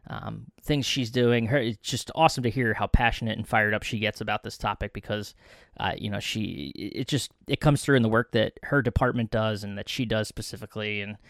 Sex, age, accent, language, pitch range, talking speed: male, 20-39, American, English, 110-130 Hz, 230 wpm